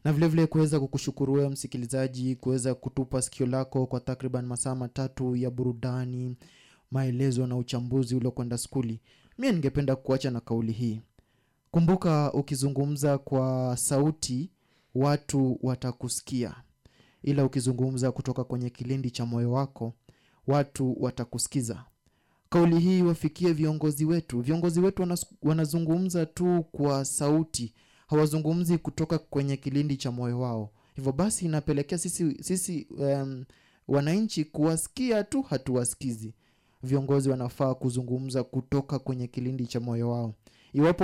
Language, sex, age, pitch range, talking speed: English, male, 20-39, 125-155 Hz, 120 wpm